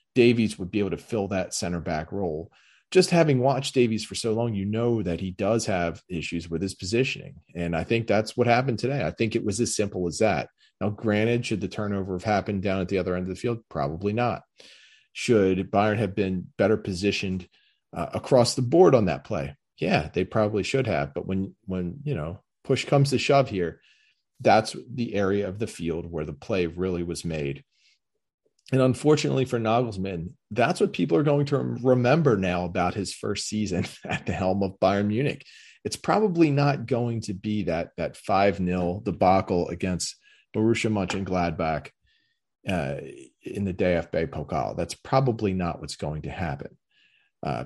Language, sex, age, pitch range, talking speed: English, male, 40-59, 90-120 Hz, 190 wpm